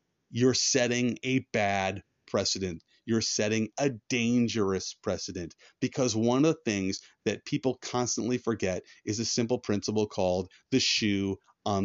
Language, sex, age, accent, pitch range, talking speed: English, male, 30-49, American, 100-130 Hz, 135 wpm